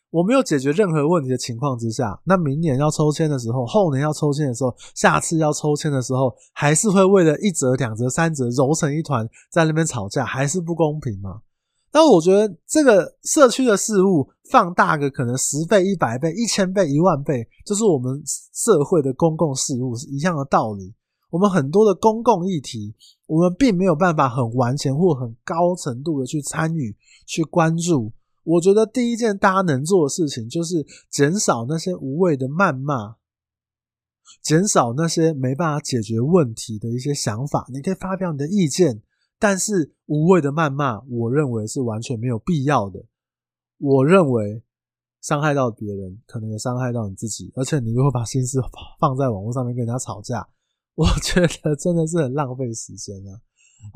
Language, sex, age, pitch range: Chinese, male, 20-39, 125-175 Hz